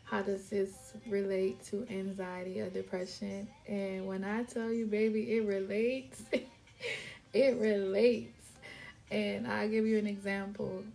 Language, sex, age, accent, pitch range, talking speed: English, female, 20-39, American, 200-230 Hz, 130 wpm